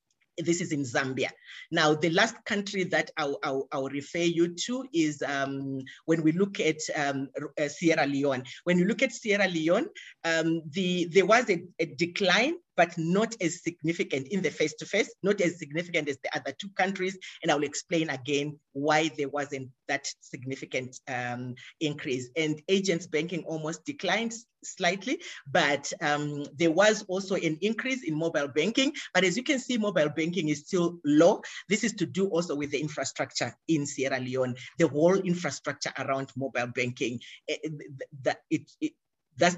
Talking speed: 160 wpm